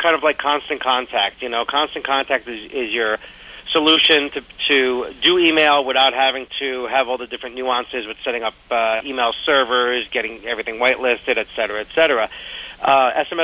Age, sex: 40-59, male